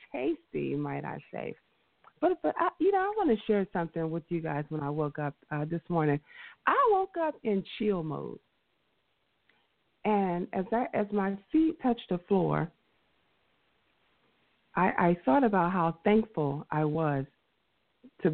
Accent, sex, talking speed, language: American, female, 155 wpm, English